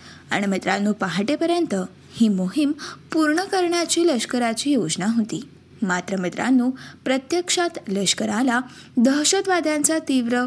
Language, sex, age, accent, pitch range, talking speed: Marathi, female, 20-39, native, 240-320 Hz, 90 wpm